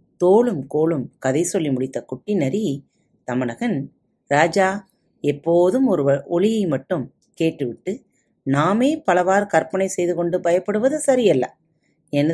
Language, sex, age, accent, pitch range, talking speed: Tamil, female, 30-49, native, 150-215 Hz, 105 wpm